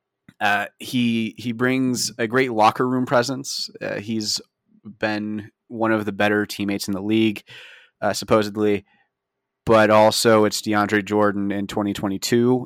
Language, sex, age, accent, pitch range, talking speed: English, male, 30-49, American, 100-115 Hz, 135 wpm